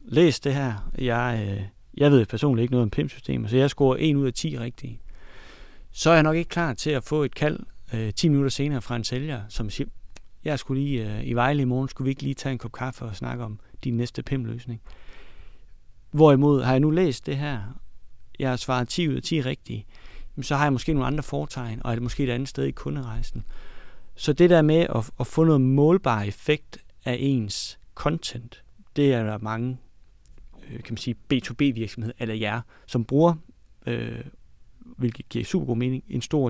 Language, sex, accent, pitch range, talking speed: Danish, male, native, 115-140 Hz, 205 wpm